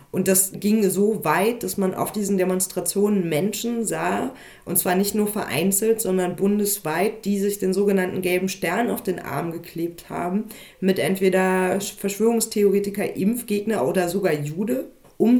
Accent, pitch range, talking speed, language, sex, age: German, 180-200 Hz, 150 wpm, German, female, 30-49